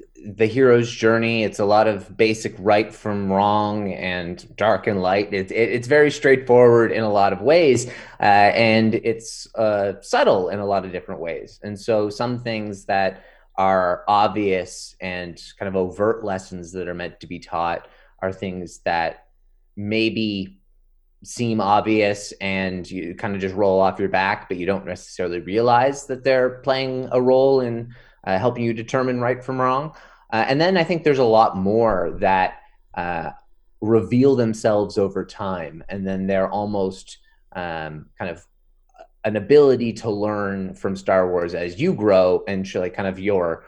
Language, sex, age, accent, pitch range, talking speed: English, male, 30-49, American, 95-115 Hz, 170 wpm